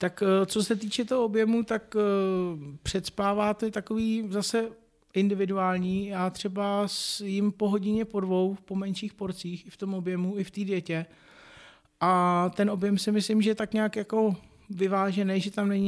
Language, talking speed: Czech, 170 wpm